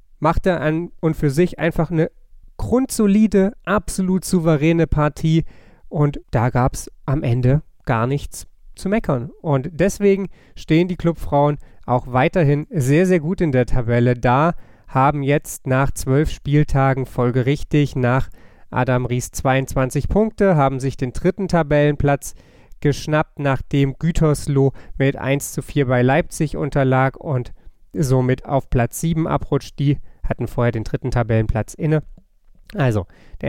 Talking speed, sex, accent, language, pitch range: 135 wpm, male, German, German, 120-150 Hz